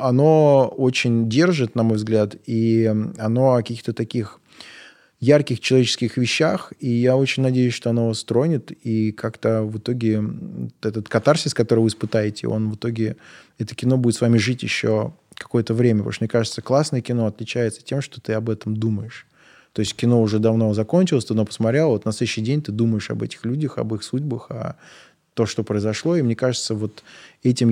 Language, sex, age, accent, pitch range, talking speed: Russian, male, 20-39, native, 110-125 Hz, 180 wpm